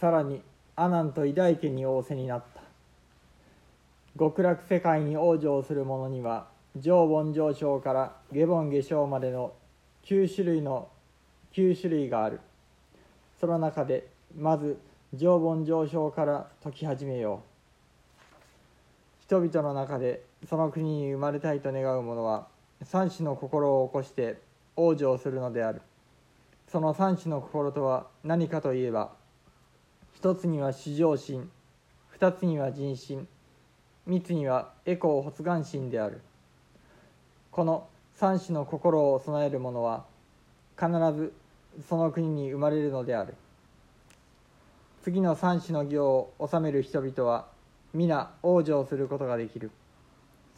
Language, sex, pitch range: Japanese, male, 130-160 Hz